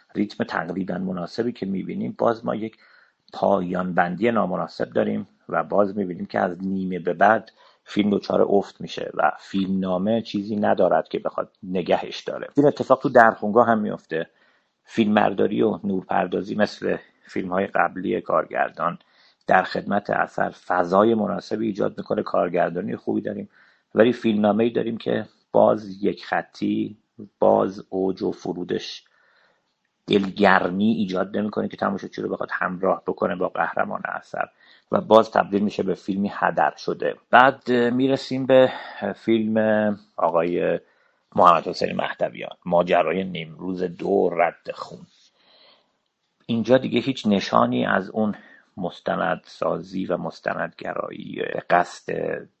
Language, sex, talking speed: Persian, male, 130 wpm